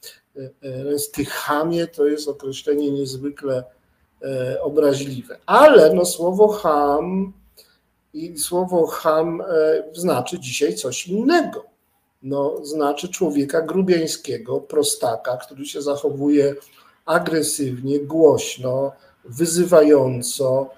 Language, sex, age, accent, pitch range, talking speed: Polish, male, 50-69, native, 140-175 Hz, 85 wpm